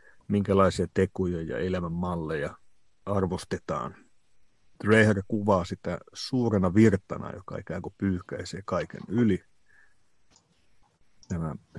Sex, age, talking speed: male, 50-69, 90 wpm